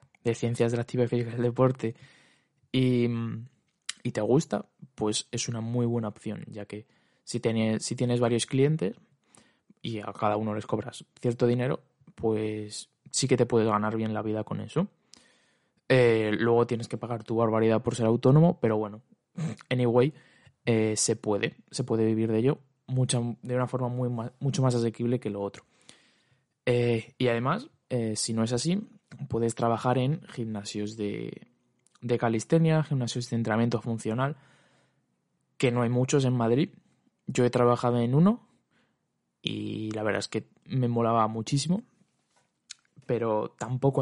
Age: 20-39